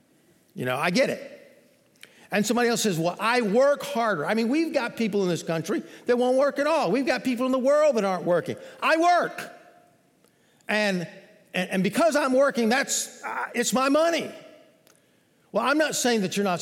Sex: male